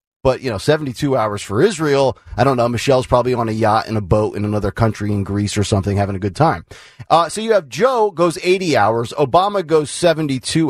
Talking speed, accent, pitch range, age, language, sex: 225 wpm, American, 130-195 Hz, 30-49, English, male